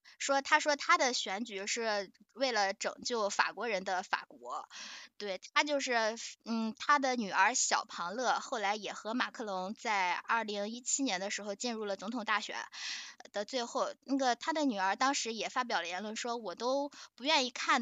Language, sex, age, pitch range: Chinese, female, 10-29, 210-275 Hz